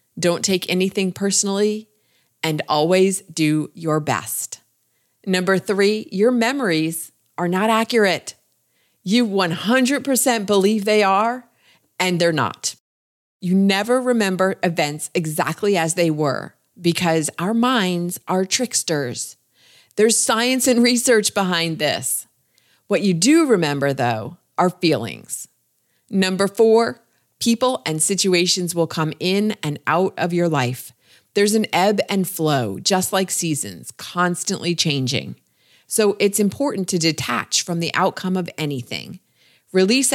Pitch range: 160-205 Hz